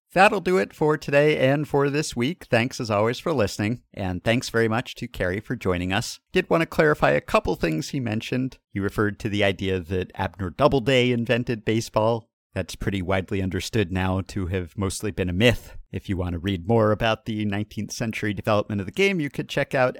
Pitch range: 95-125 Hz